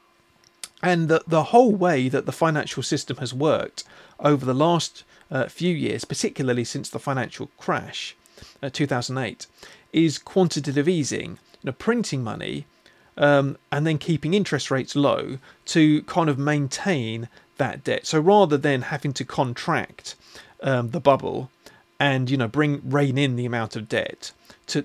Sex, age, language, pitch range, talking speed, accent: male, 40-59, English, 130-165 Hz, 155 wpm, British